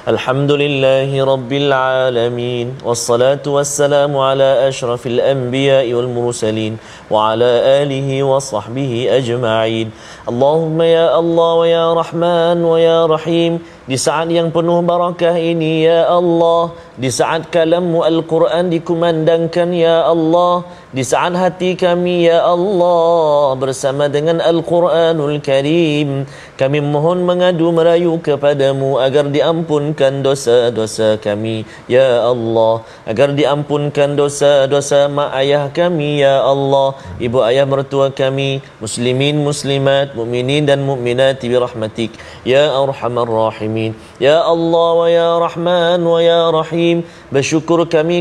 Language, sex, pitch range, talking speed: Malayalam, male, 135-170 Hz, 85 wpm